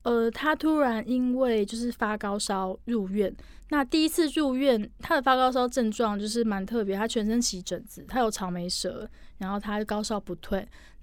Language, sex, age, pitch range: Chinese, female, 20-39, 200-245 Hz